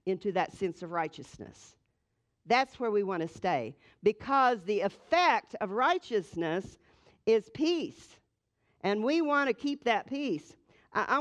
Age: 50-69